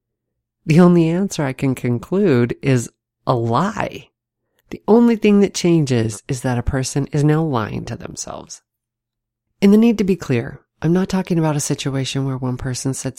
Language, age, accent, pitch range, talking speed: English, 30-49, American, 115-155 Hz, 175 wpm